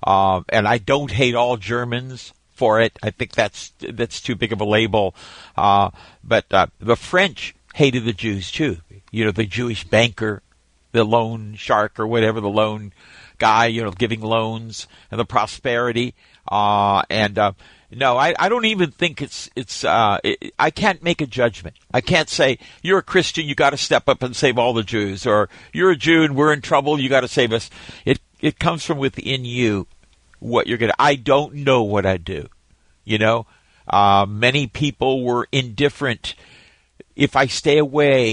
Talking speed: 190 wpm